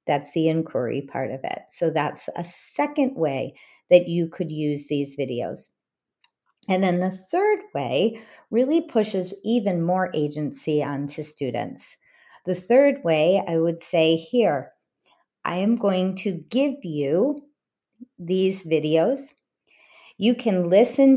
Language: English